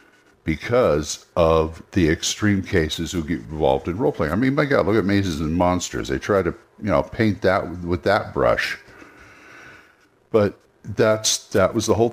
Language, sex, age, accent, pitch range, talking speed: English, male, 60-79, American, 85-110 Hz, 185 wpm